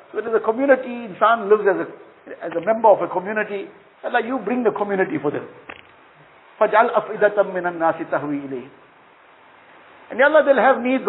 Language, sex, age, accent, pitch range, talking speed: English, male, 50-69, Indian, 195-255 Hz, 140 wpm